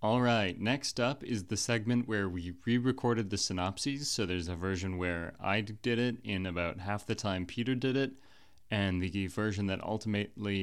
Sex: male